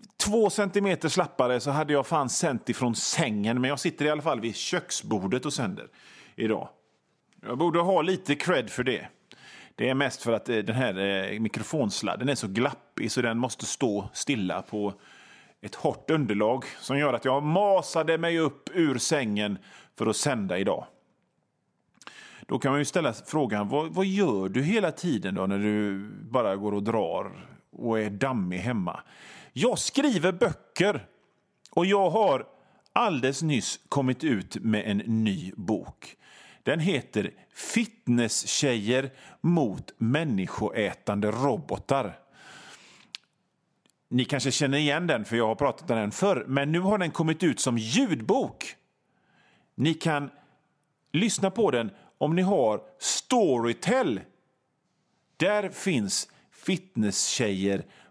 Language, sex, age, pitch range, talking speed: Swedish, male, 30-49, 115-175 Hz, 140 wpm